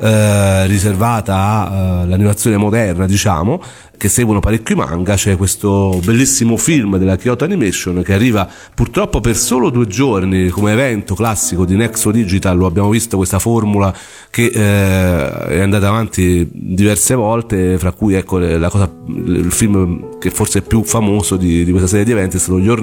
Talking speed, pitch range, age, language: 160 wpm, 95-115 Hz, 40-59, Italian